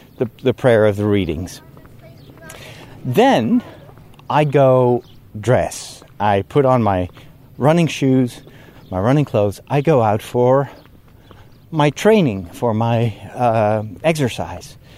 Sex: male